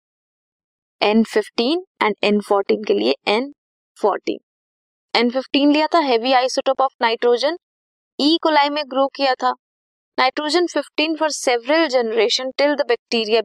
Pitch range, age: 210-285 Hz, 20-39